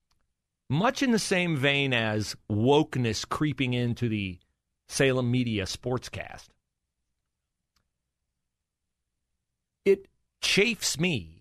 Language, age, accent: English, 40-59, American